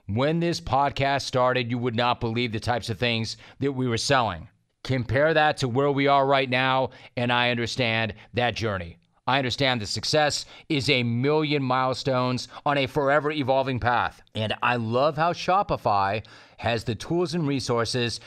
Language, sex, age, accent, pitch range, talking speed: English, male, 40-59, American, 115-145 Hz, 170 wpm